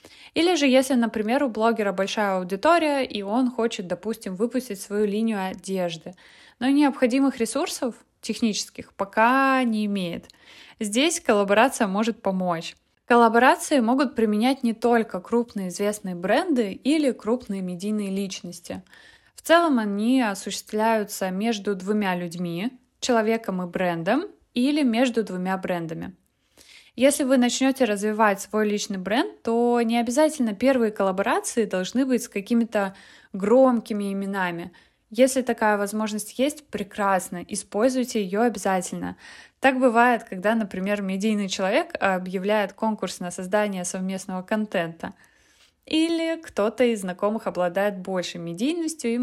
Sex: female